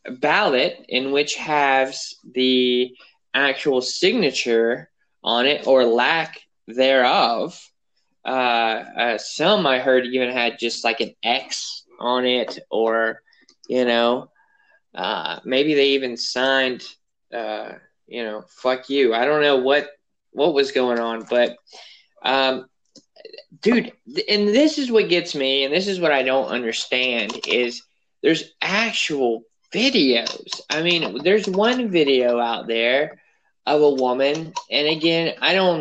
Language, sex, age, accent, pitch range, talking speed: English, male, 20-39, American, 120-150 Hz, 135 wpm